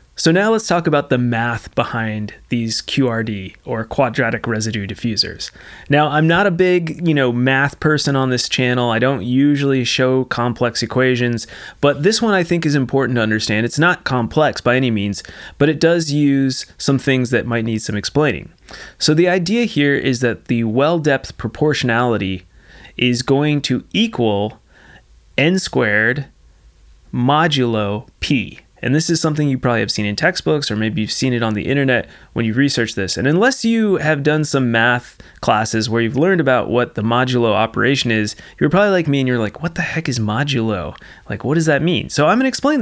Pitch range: 110-150 Hz